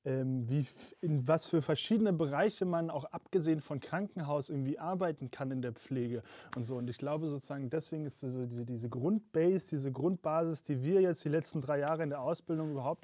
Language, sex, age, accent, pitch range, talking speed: German, male, 20-39, German, 135-165 Hz, 185 wpm